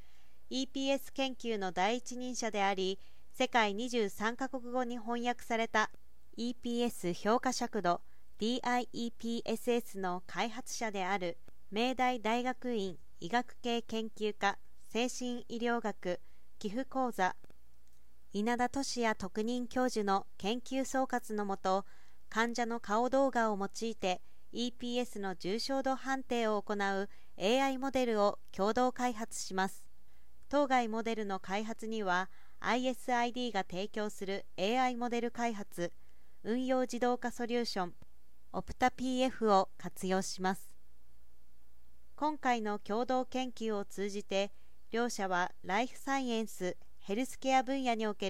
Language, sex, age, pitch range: Japanese, female, 40-59, 195-245 Hz